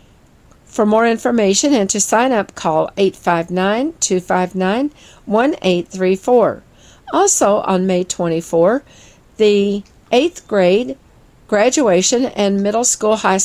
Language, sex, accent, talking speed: English, female, American, 95 wpm